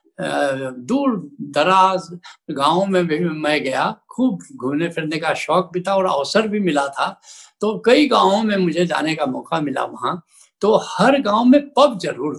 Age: 70-89